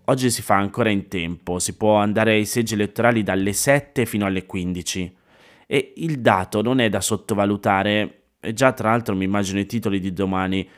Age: 30-49